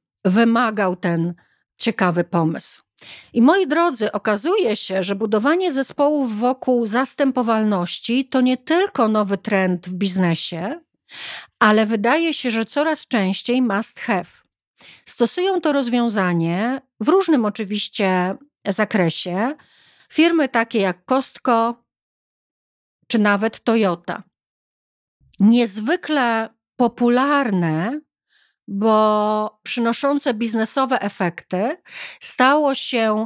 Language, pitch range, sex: Polish, 205-280 Hz, female